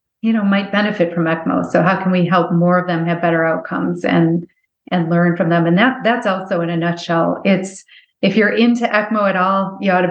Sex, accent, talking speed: female, American, 230 wpm